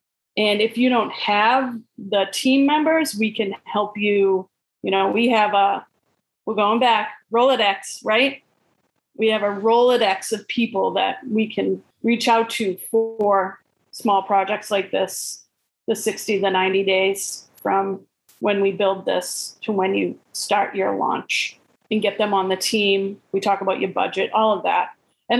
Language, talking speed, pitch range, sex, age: English, 165 wpm, 200-230 Hz, female, 30-49